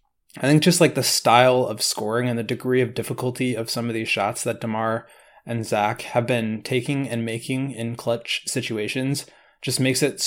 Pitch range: 115-135 Hz